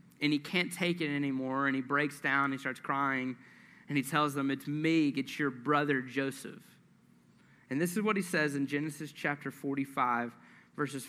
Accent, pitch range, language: American, 140-175 Hz, English